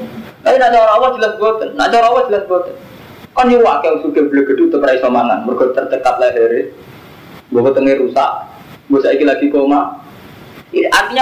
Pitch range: 155-245 Hz